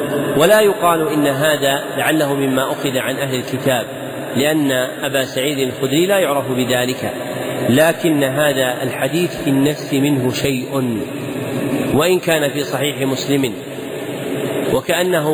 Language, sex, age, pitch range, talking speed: Arabic, male, 40-59, 135-160 Hz, 115 wpm